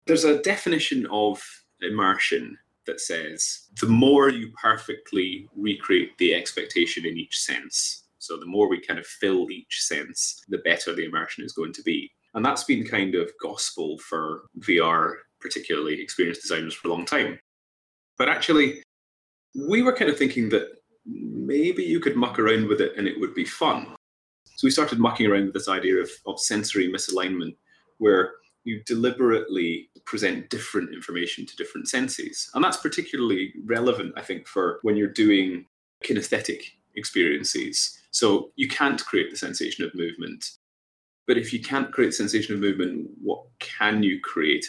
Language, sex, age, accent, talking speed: English, male, 30-49, British, 165 wpm